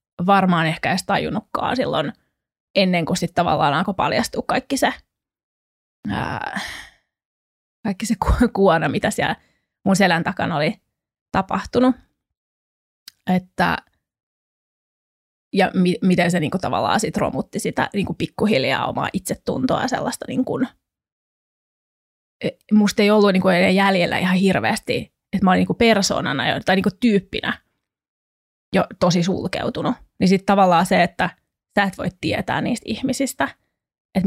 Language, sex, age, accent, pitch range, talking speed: Finnish, female, 20-39, native, 180-220 Hz, 115 wpm